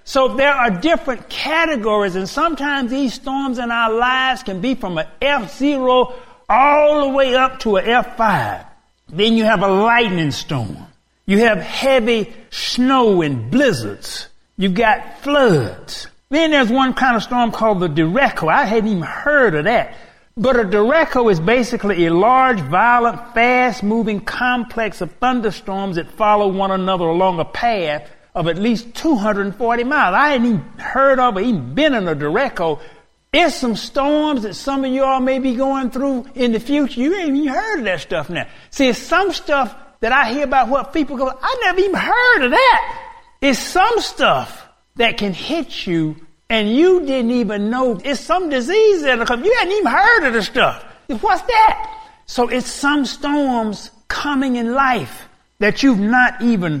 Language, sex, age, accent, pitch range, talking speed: English, male, 60-79, American, 215-280 Hz, 175 wpm